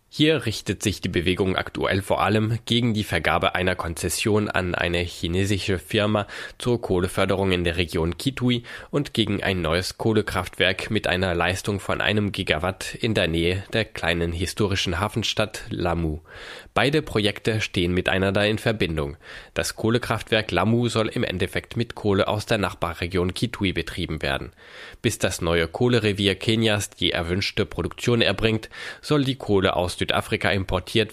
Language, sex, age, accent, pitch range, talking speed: German, male, 20-39, German, 90-110 Hz, 150 wpm